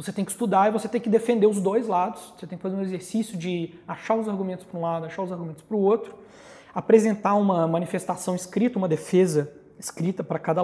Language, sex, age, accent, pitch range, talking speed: Portuguese, male, 20-39, Brazilian, 160-210 Hz, 225 wpm